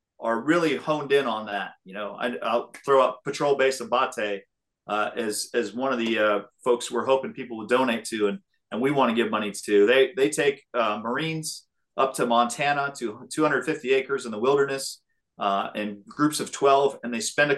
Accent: American